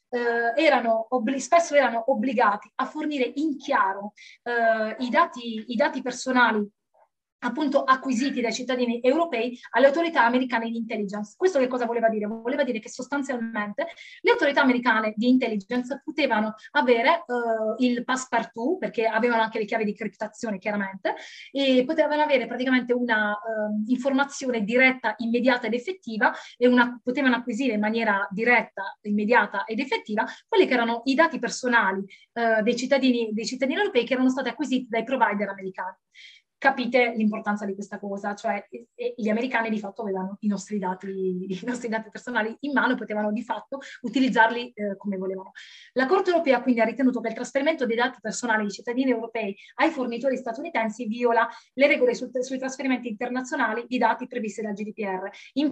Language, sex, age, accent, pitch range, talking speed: Italian, female, 20-39, native, 220-265 Hz, 165 wpm